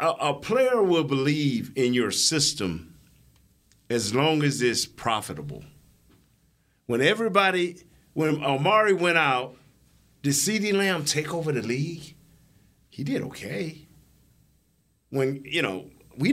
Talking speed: 120 wpm